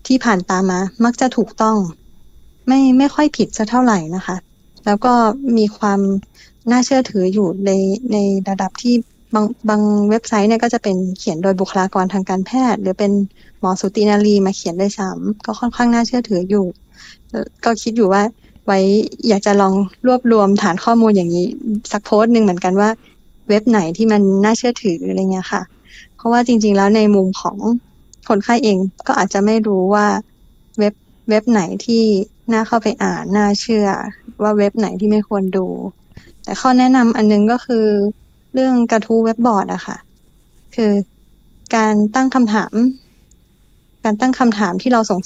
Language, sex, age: Thai, female, 20-39